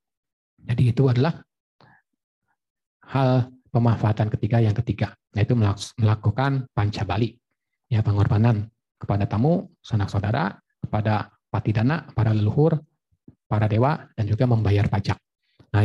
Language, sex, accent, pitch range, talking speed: Indonesian, male, native, 110-130 Hz, 115 wpm